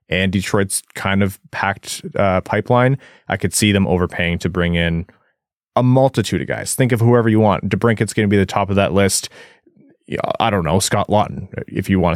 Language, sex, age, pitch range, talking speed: English, male, 20-39, 90-110 Hz, 200 wpm